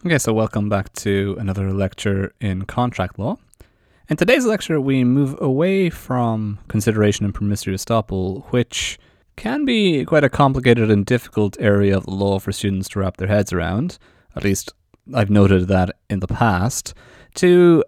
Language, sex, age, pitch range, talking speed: English, male, 30-49, 100-125 Hz, 160 wpm